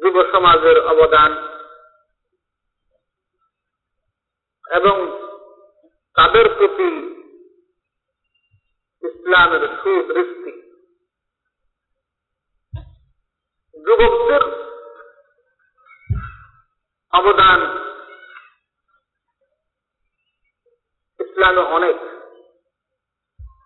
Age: 50-69